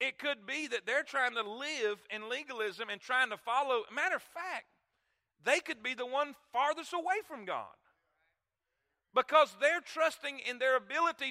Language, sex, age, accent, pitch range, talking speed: English, male, 40-59, American, 230-295 Hz, 170 wpm